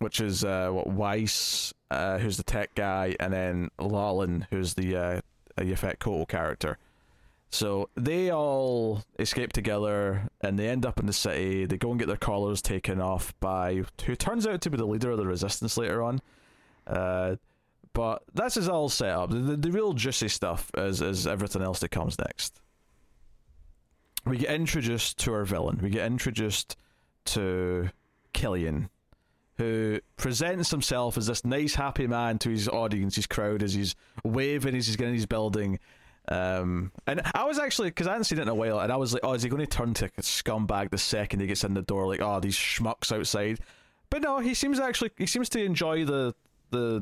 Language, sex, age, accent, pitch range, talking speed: English, male, 20-39, British, 95-125 Hz, 195 wpm